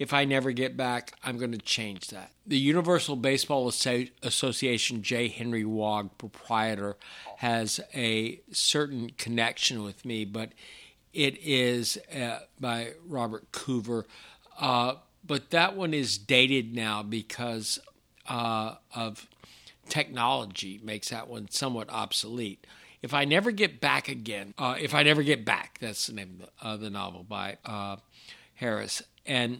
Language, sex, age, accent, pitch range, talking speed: English, male, 60-79, American, 115-150 Hz, 145 wpm